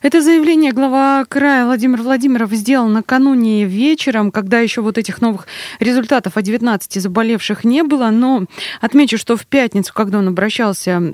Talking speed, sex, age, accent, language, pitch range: 150 wpm, female, 20-39, native, Russian, 185-235 Hz